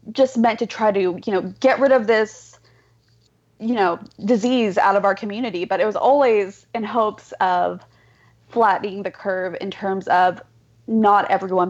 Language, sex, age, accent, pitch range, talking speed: English, female, 20-39, American, 190-235 Hz, 170 wpm